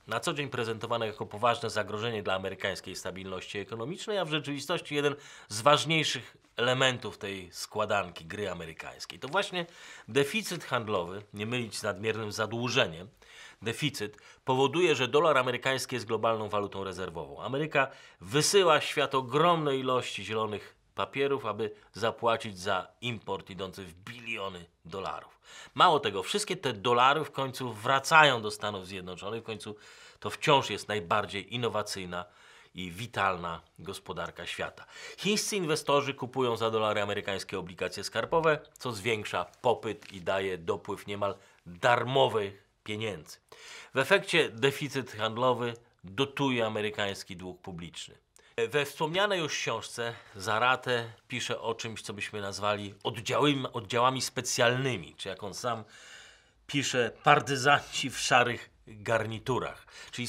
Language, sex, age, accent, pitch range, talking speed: Polish, male, 30-49, native, 105-135 Hz, 125 wpm